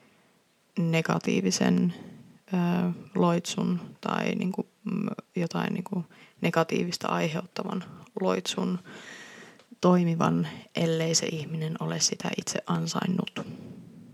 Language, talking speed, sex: Finnish, 65 wpm, female